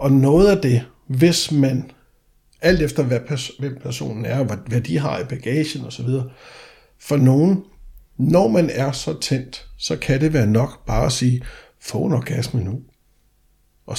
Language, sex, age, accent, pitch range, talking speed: Danish, male, 60-79, native, 125-155 Hz, 160 wpm